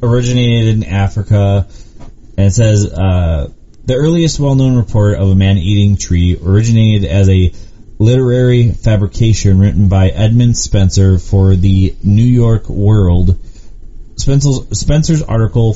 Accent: American